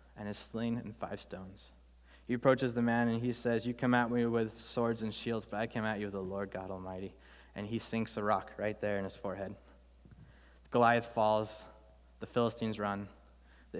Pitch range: 100-120 Hz